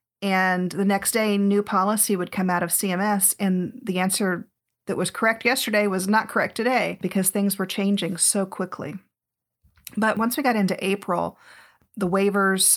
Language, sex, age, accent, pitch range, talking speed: English, female, 40-59, American, 180-205 Hz, 170 wpm